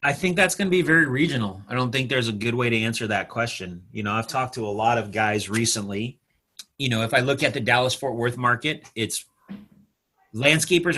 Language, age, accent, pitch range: English, 30-49, American, 105-125 Hz